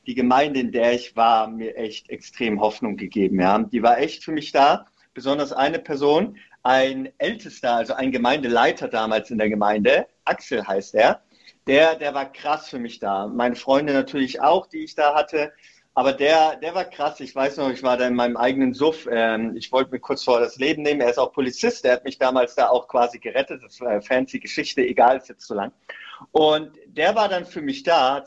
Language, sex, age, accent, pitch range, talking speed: German, male, 40-59, German, 125-150 Hz, 215 wpm